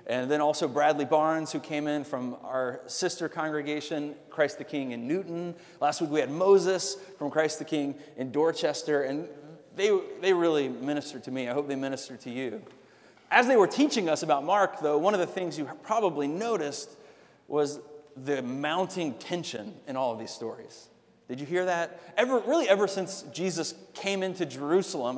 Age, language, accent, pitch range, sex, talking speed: 30-49, English, American, 140-190 Hz, male, 185 wpm